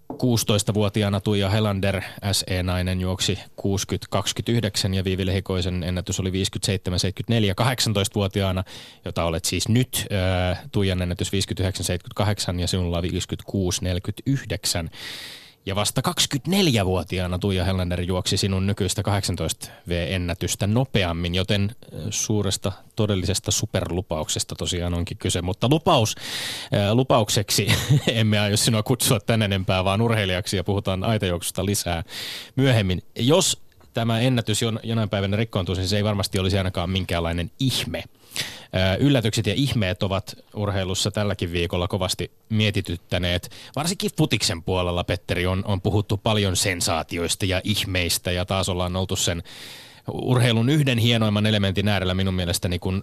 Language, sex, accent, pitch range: Finnish, male, native, 90-110 Hz